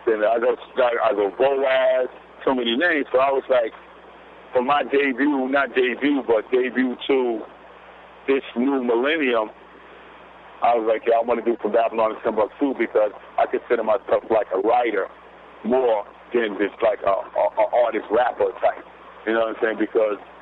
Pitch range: 115-155 Hz